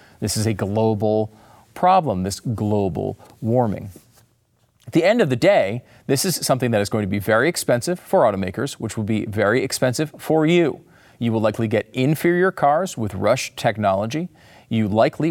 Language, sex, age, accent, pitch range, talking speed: English, male, 40-59, American, 110-165 Hz, 175 wpm